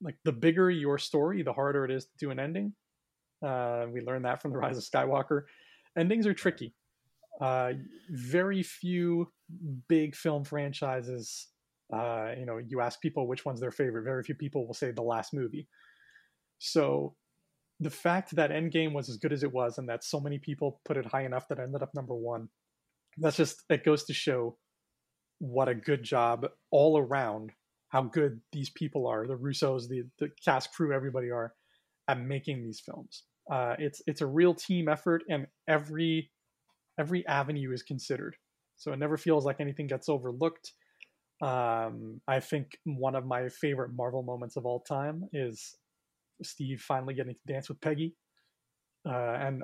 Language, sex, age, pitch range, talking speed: English, male, 30-49, 125-155 Hz, 180 wpm